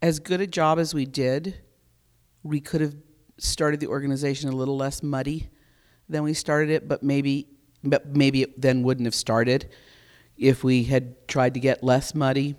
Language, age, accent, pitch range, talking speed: English, 50-69, American, 130-150 Hz, 180 wpm